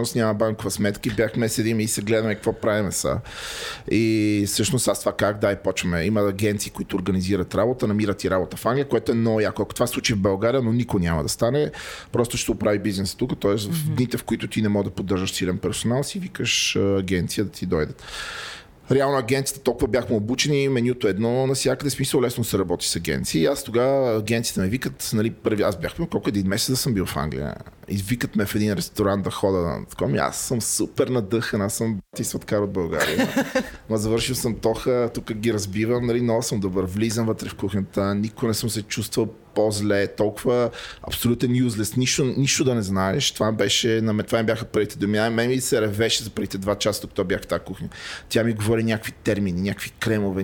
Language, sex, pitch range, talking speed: Bulgarian, male, 105-125 Hz, 210 wpm